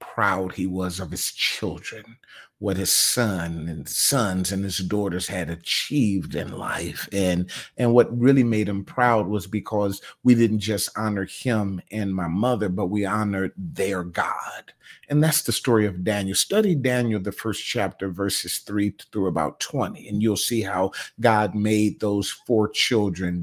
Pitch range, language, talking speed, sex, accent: 95-115 Hz, English, 165 wpm, male, American